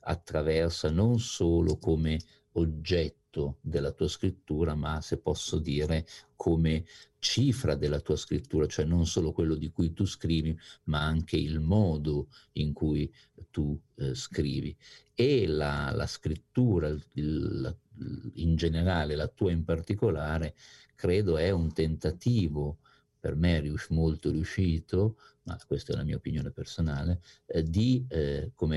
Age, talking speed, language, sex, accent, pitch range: 50-69, 130 wpm, Italian, male, native, 75-95 Hz